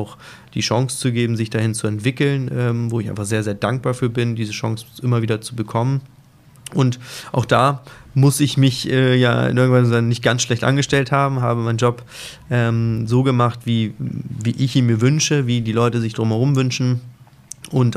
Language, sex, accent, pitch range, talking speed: German, male, German, 110-125 Hz, 195 wpm